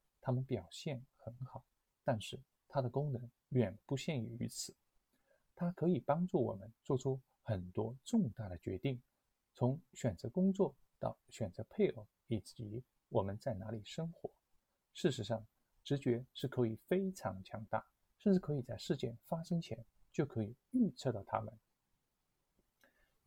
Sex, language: male, Chinese